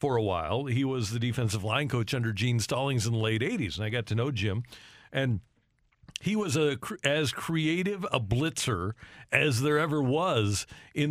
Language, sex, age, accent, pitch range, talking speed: English, male, 50-69, American, 120-160 Hz, 190 wpm